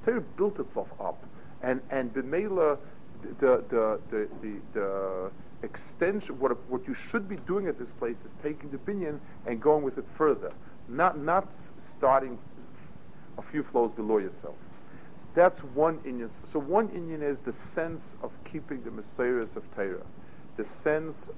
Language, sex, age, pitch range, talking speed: English, male, 50-69, 125-175 Hz, 155 wpm